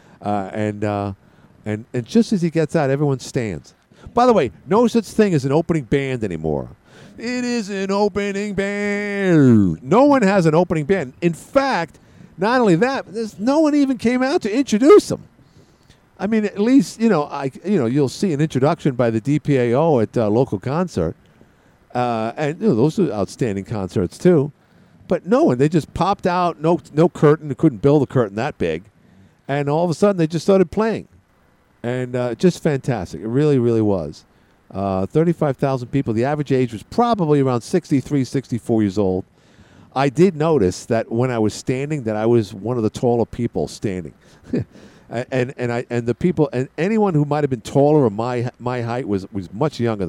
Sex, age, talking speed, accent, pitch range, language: male, 50-69, 200 wpm, American, 120-185 Hz, English